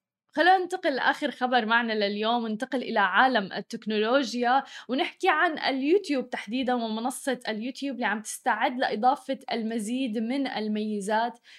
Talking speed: 120 wpm